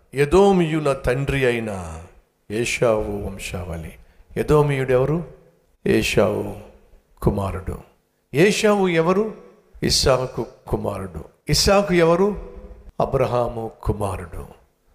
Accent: native